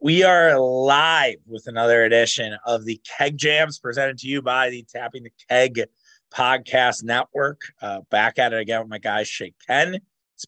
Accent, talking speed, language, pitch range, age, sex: American, 180 wpm, English, 115-135 Hz, 30-49, male